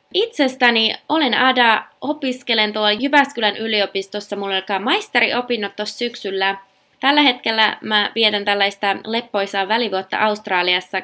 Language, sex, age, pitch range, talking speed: Finnish, female, 20-39, 190-240 Hz, 110 wpm